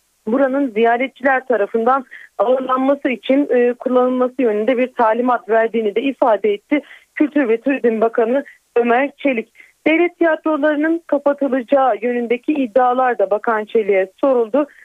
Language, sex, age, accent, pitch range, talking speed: Turkish, female, 40-59, native, 235-285 Hz, 115 wpm